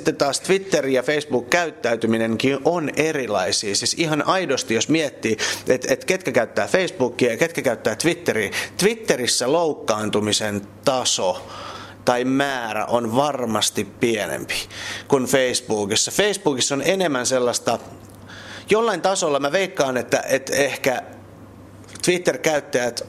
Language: Finnish